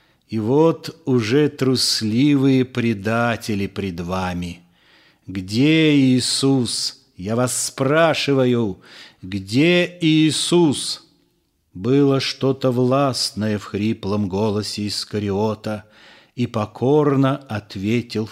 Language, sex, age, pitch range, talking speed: Russian, male, 40-59, 110-135 Hz, 80 wpm